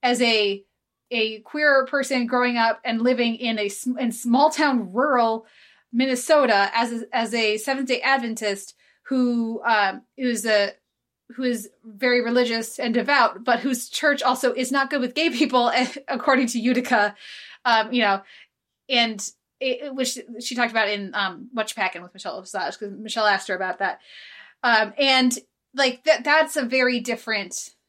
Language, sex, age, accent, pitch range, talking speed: English, female, 20-39, American, 210-250 Hz, 165 wpm